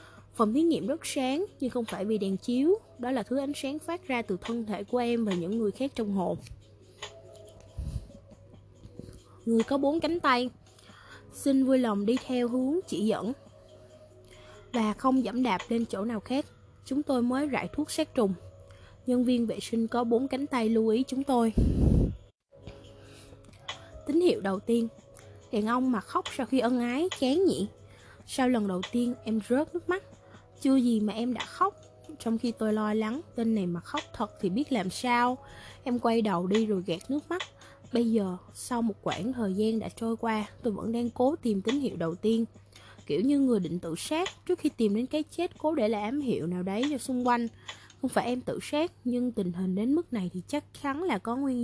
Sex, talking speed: female, 205 wpm